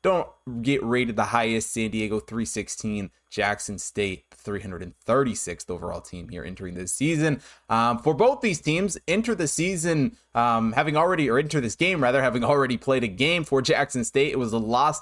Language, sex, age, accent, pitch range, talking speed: English, male, 20-39, American, 115-150 Hz, 180 wpm